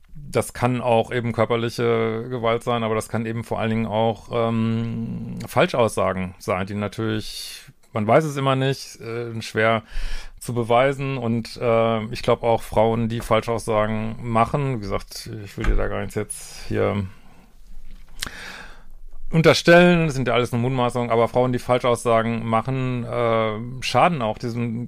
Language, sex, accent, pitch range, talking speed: German, male, German, 110-130 Hz, 155 wpm